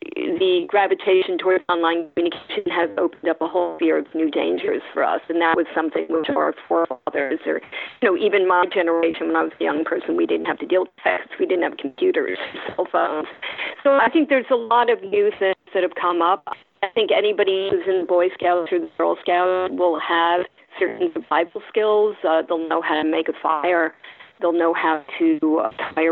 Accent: American